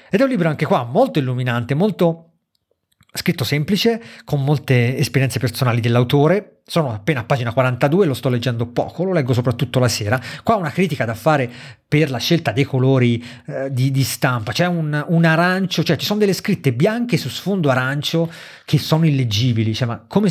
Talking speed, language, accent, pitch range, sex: 185 wpm, Italian, native, 125-155 Hz, male